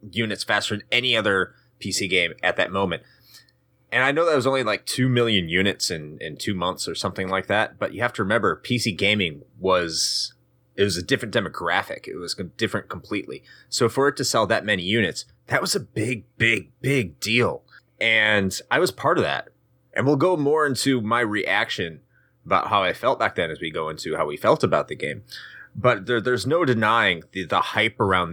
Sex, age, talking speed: male, 30-49, 210 wpm